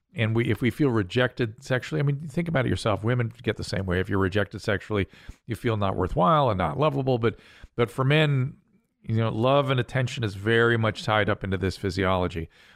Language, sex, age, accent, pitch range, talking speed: English, male, 40-59, American, 105-130 Hz, 215 wpm